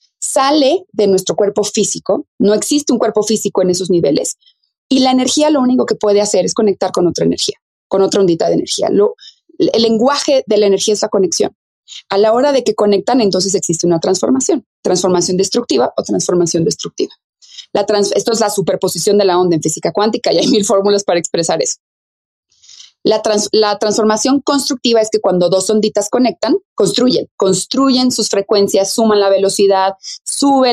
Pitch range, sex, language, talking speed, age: 195-255 Hz, female, Spanish, 180 wpm, 30-49